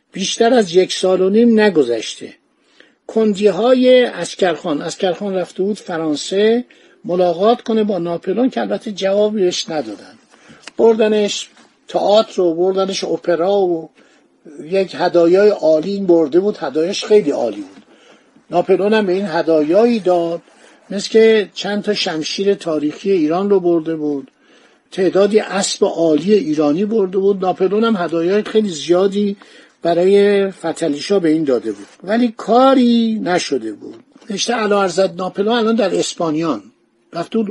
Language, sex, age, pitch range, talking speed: Persian, male, 60-79, 175-220 Hz, 130 wpm